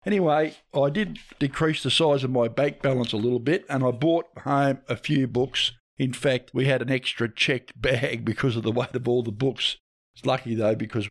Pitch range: 120-145 Hz